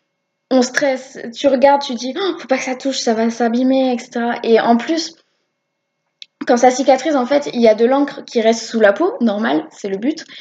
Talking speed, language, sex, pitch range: 220 wpm, French, female, 210-270 Hz